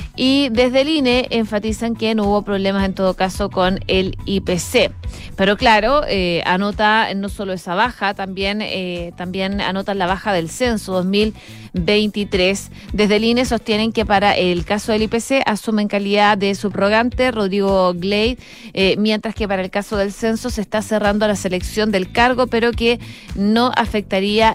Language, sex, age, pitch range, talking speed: Spanish, female, 30-49, 190-225 Hz, 165 wpm